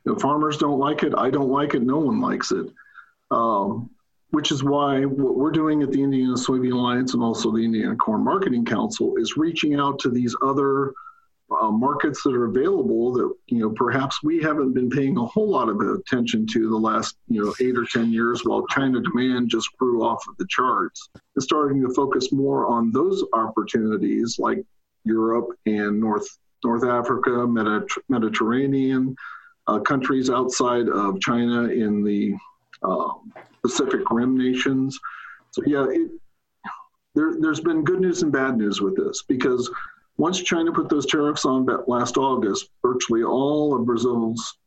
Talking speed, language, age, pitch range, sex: 170 wpm, English, 50-69, 120-155 Hz, male